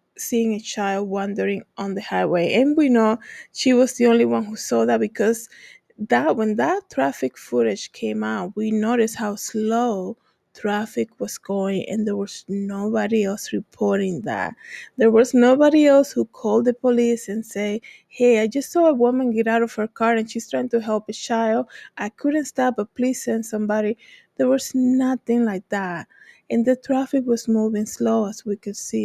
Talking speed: 185 wpm